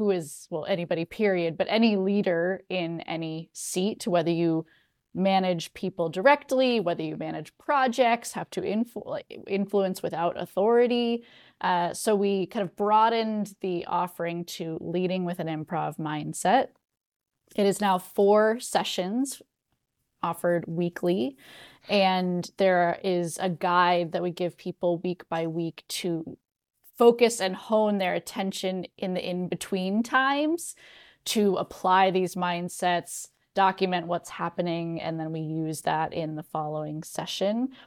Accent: American